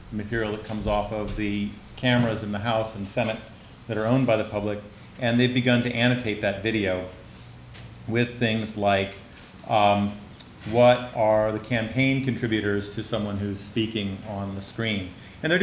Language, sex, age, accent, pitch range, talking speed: English, male, 40-59, American, 105-120 Hz, 165 wpm